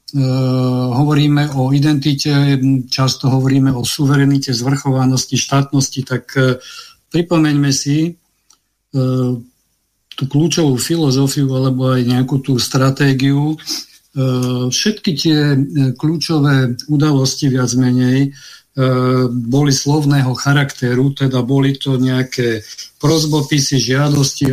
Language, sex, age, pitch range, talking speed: Slovak, male, 50-69, 125-140 Hz, 100 wpm